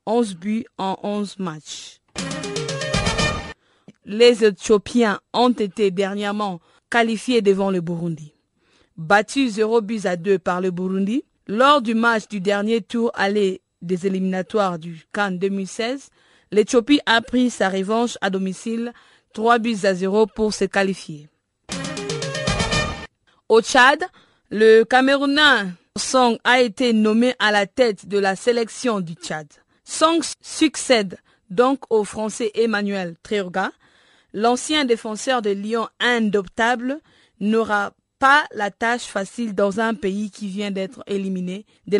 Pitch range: 195-235 Hz